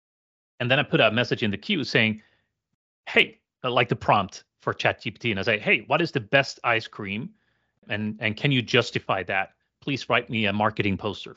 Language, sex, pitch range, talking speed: English, male, 105-125 Hz, 210 wpm